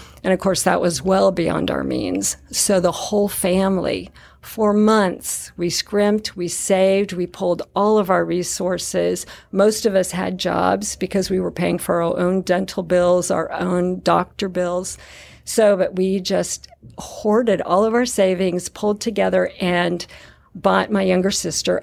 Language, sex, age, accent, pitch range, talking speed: English, female, 50-69, American, 180-210 Hz, 160 wpm